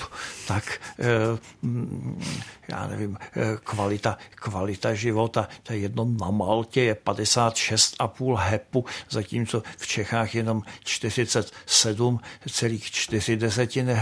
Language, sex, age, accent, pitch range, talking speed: Czech, male, 60-79, native, 110-155 Hz, 80 wpm